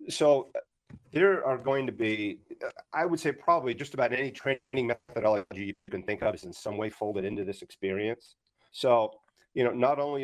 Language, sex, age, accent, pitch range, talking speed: English, male, 40-59, American, 105-125 Hz, 190 wpm